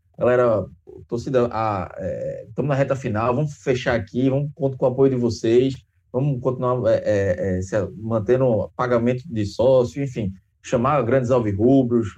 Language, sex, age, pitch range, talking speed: Portuguese, male, 20-39, 120-170 Hz, 155 wpm